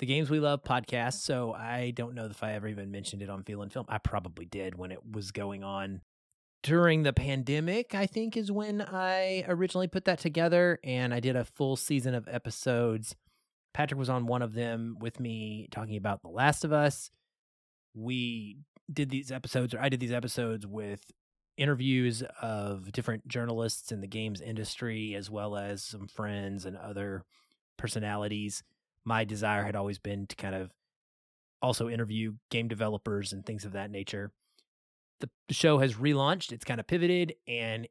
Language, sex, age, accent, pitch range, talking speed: English, male, 30-49, American, 105-135 Hz, 180 wpm